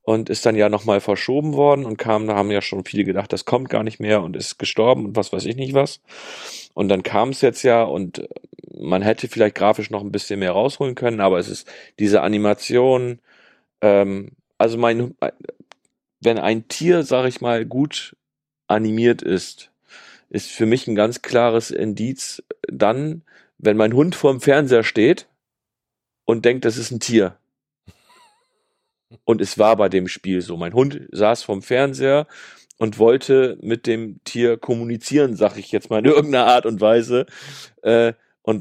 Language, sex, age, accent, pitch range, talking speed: German, male, 40-59, German, 105-130 Hz, 175 wpm